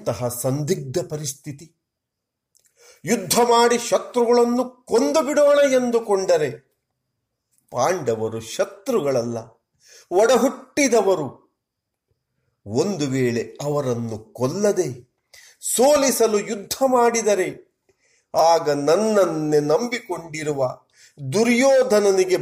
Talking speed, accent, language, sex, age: 60 wpm, native, Kannada, male, 50-69